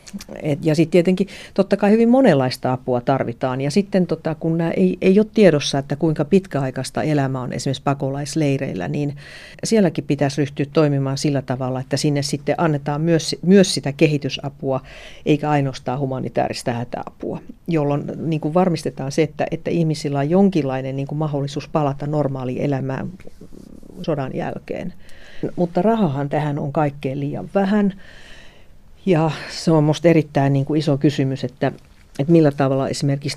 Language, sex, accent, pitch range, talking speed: Finnish, female, native, 135-165 Hz, 140 wpm